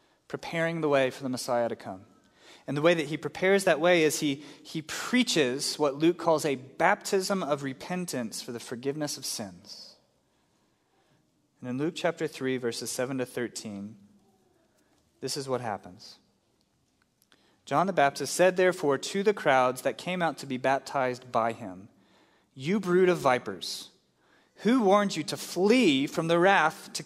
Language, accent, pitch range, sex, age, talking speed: English, American, 120-160 Hz, male, 30-49, 165 wpm